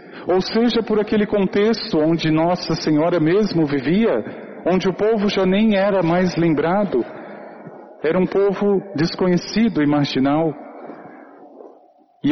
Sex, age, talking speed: male, 40-59, 120 wpm